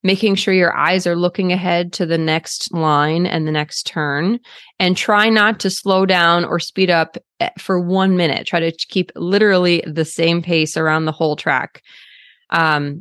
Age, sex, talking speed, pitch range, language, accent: 20-39, female, 180 wpm, 170-200 Hz, English, American